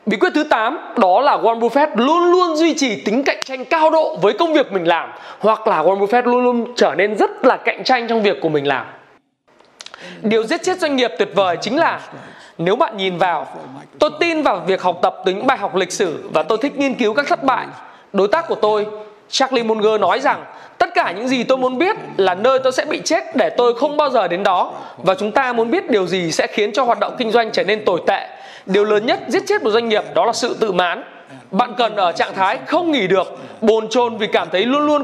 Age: 20-39